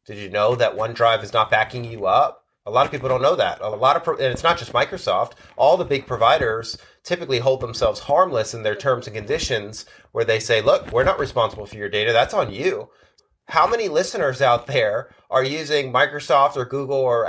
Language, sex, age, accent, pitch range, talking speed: English, male, 30-49, American, 125-185 Hz, 220 wpm